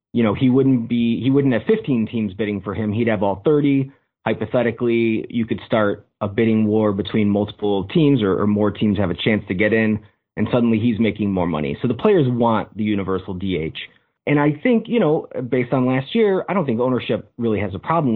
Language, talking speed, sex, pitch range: English, 220 wpm, male, 105-130 Hz